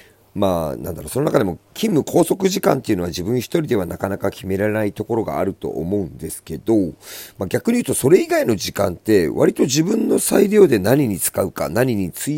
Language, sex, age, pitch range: Japanese, male, 40-59, 90-125 Hz